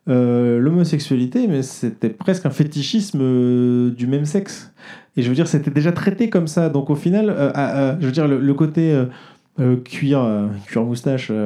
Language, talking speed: French, 195 wpm